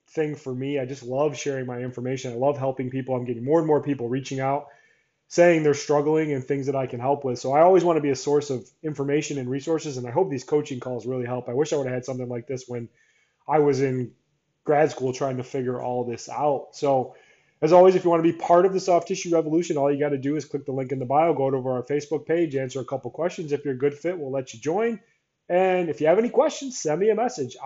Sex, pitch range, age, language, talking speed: male, 135-170 Hz, 20-39, English, 275 wpm